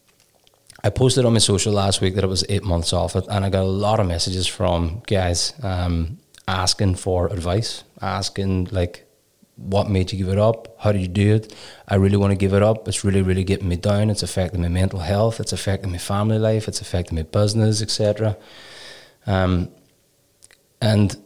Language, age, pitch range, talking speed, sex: English, 20-39, 95-110 Hz, 200 wpm, male